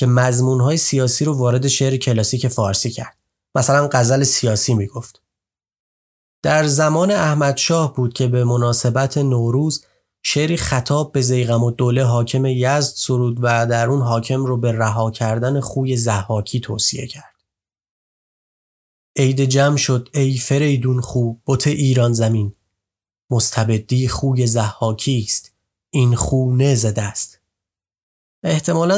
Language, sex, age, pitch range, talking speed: Persian, male, 30-49, 110-135 Hz, 120 wpm